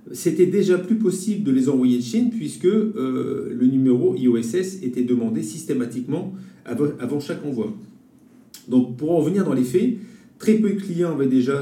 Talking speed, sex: 170 wpm, male